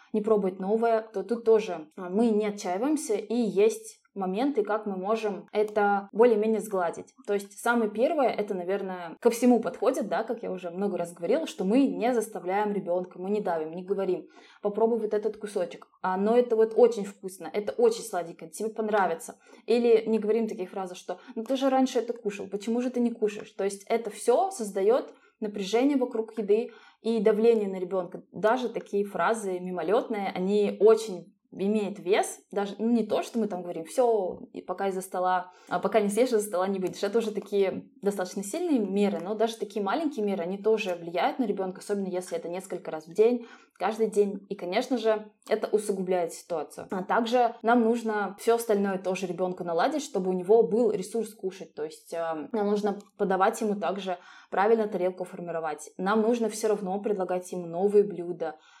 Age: 20-39